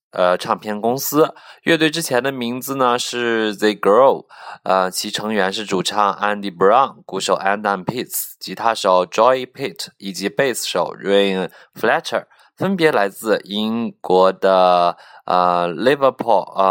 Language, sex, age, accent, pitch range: Chinese, male, 20-39, native, 90-110 Hz